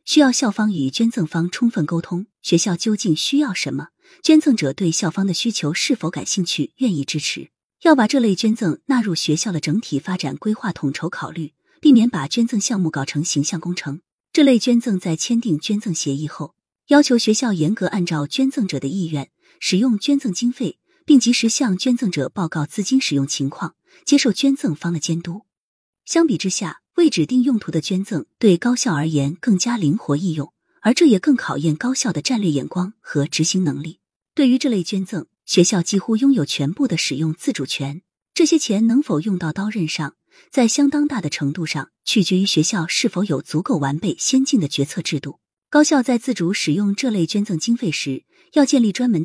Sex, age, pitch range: female, 30-49, 160-245 Hz